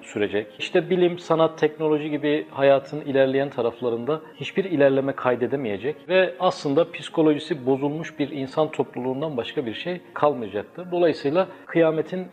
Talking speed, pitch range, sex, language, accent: 120 wpm, 125-165 Hz, male, Turkish, native